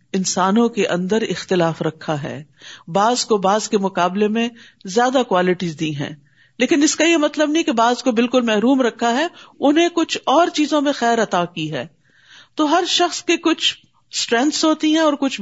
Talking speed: 185 wpm